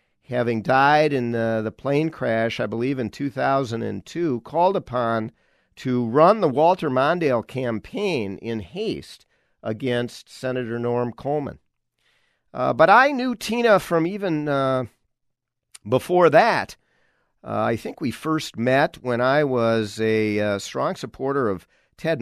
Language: English